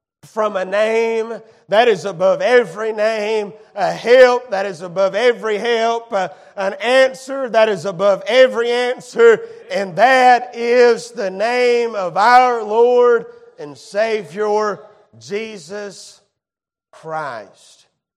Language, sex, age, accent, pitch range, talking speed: English, male, 40-59, American, 135-205 Hz, 110 wpm